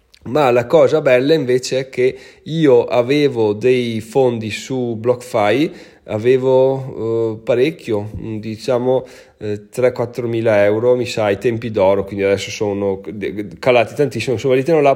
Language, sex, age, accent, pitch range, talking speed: Italian, male, 30-49, native, 115-145 Hz, 135 wpm